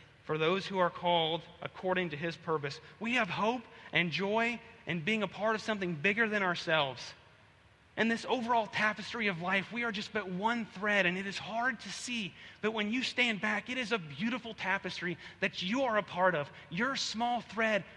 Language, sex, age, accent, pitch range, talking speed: English, male, 30-49, American, 170-220 Hz, 200 wpm